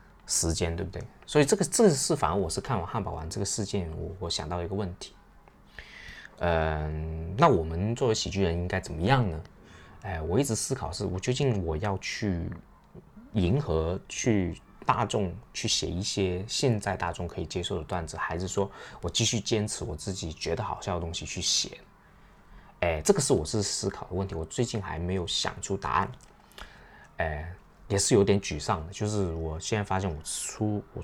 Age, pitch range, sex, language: 20-39, 85-105 Hz, male, Chinese